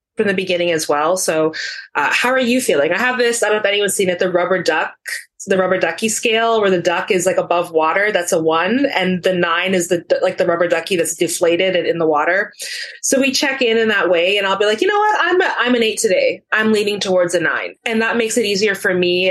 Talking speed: 265 wpm